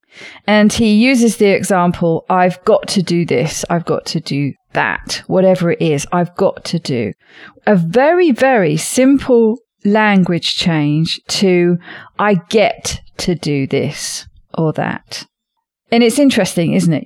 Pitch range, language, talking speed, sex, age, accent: 170-225 Hz, English, 145 wpm, female, 40-59, British